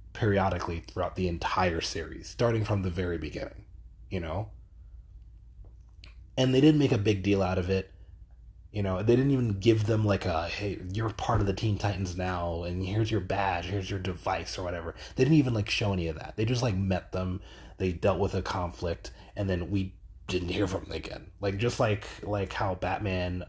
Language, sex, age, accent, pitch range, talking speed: English, male, 30-49, American, 90-105 Hz, 205 wpm